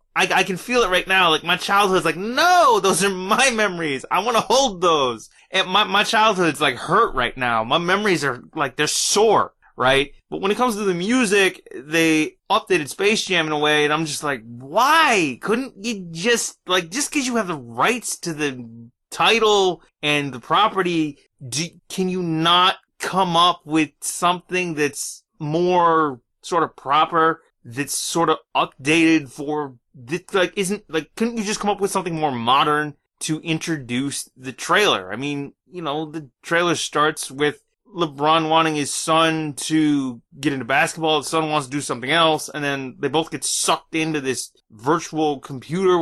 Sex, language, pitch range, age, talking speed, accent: male, English, 150-185 Hz, 20-39, 180 wpm, American